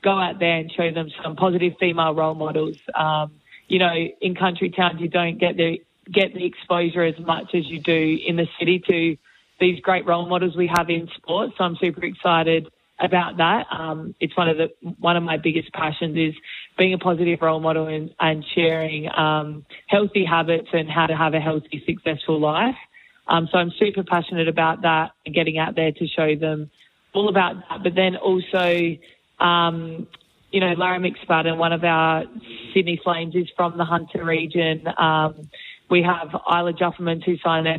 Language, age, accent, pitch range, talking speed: English, 20-39, Australian, 160-180 Hz, 185 wpm